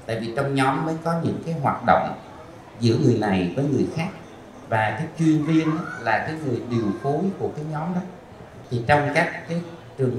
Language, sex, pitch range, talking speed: Vietnamese, male, 120-145 Hz, 200 wpm